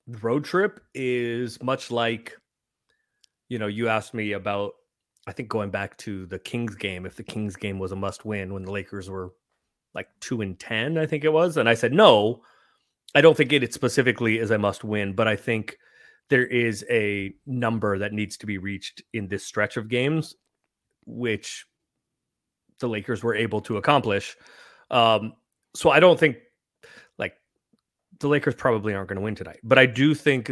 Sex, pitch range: male, 105-130 Hz